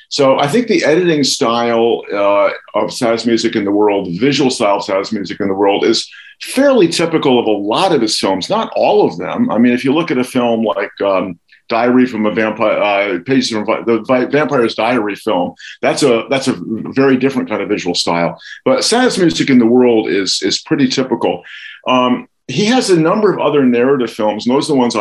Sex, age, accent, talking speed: male, 50-69, American, 215 wpm